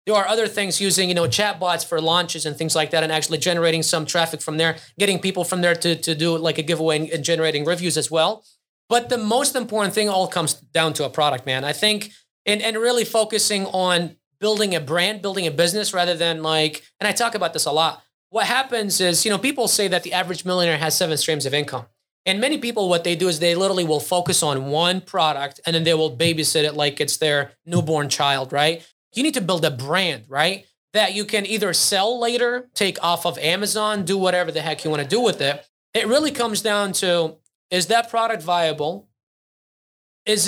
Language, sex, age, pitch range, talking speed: English, male, 20-39, 160-205 Hz, 220 wpm